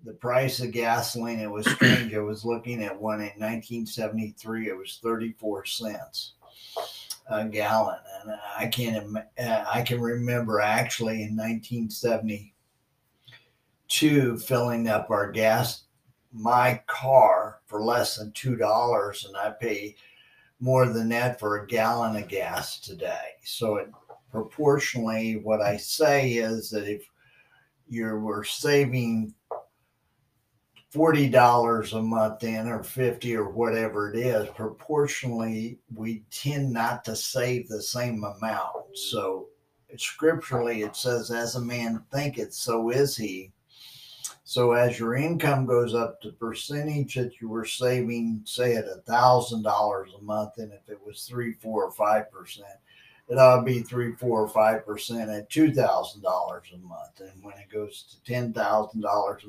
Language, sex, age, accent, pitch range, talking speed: English, male, 50-69, American, 110-125 Hz, 140 wpm